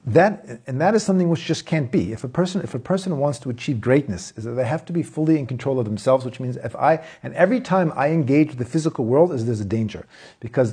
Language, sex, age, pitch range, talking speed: English, male, 40-59, 120-165 Hz, 265 wpm